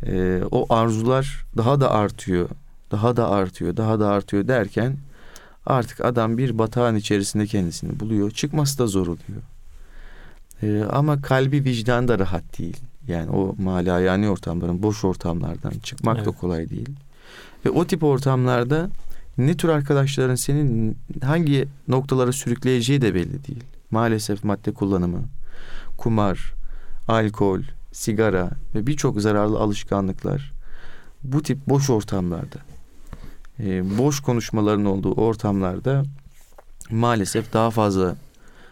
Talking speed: 120 wpm